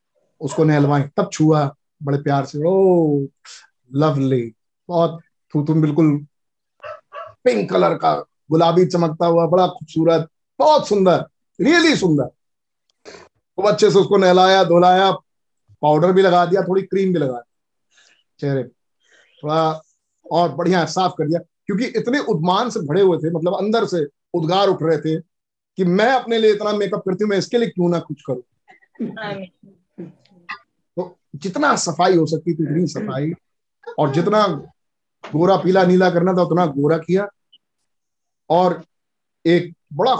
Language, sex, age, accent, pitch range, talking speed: Hindi, male, 50-69, native, 150-190 Hz, 140 wpm